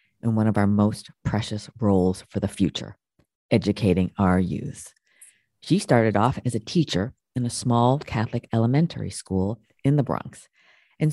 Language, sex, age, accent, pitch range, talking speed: English, female, 40-59, American, 100-125 Hz, 155 wpm